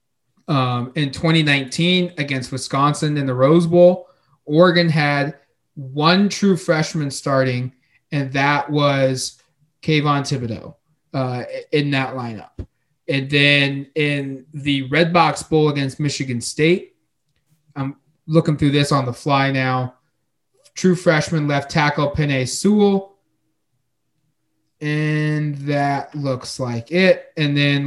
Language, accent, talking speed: English, American, 120 wpm